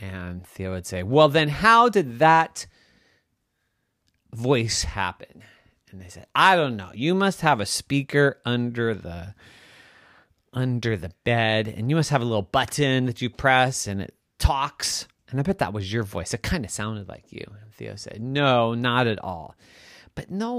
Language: English